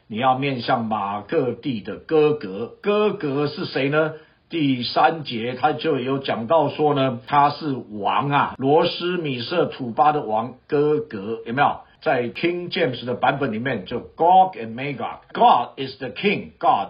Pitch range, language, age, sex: 125-165 Hz, Chinese, 60-79, male